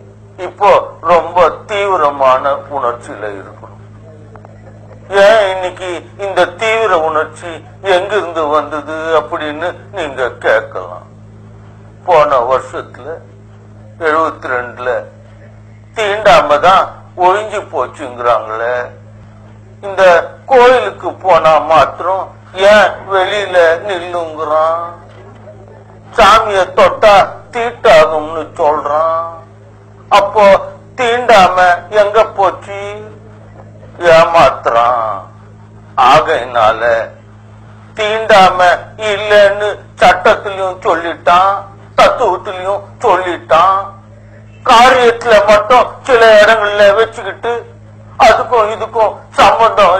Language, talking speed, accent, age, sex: Tamil, 65 wpm, native, 50-69, male